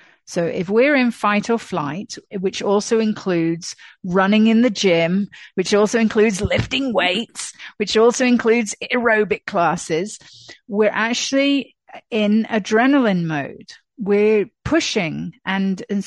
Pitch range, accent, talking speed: 175-220 Hz, British, 125 wpm